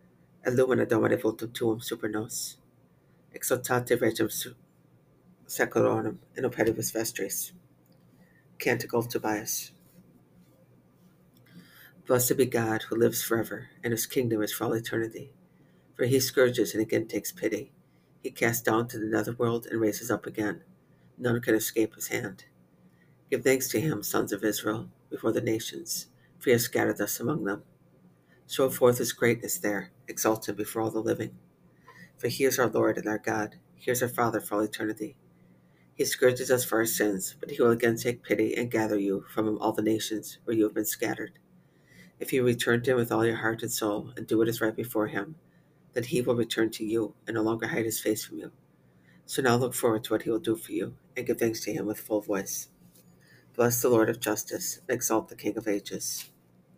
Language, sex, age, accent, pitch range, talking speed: English, female, 50-69, American, 105-120 Hz, 185 wpm